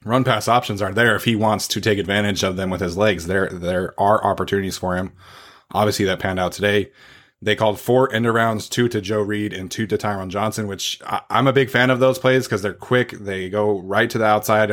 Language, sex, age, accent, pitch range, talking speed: English, male, 20-39, American, 95-115 Hz, 240 wpm